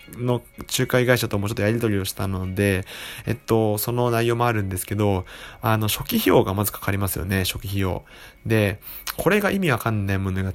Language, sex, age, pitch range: Japanese, male, 20-39, 100-125 Hz